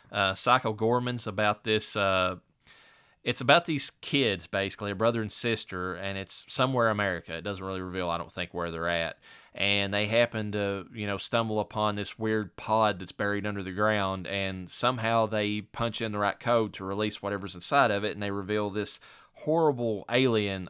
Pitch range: 100-115 Hz